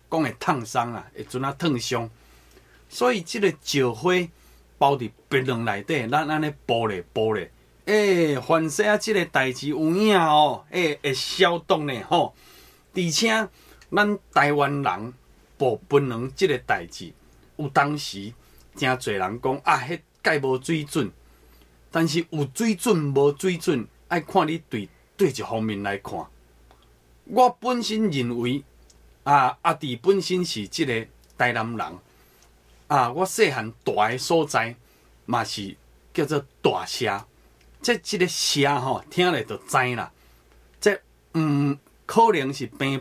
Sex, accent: male, native